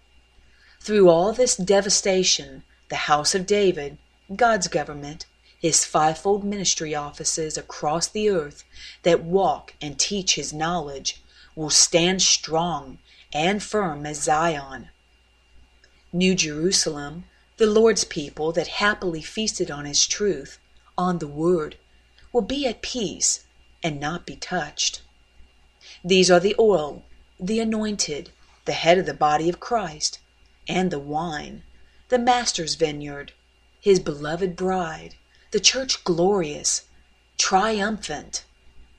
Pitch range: 145-185 Hz